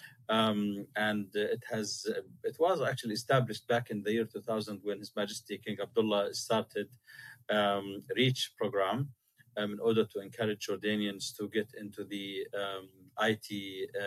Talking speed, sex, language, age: 145 wpm, male, English, 40-59